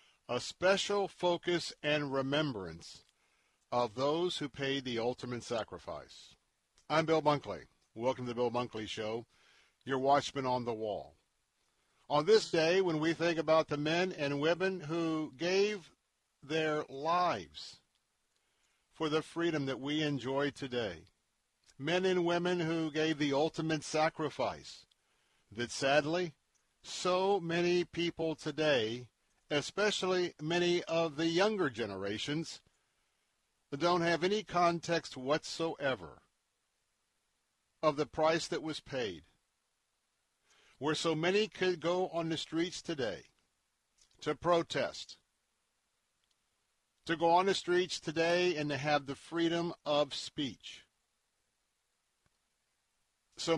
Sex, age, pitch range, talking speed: male, 50-69, 145-175 Hz, 120 wpm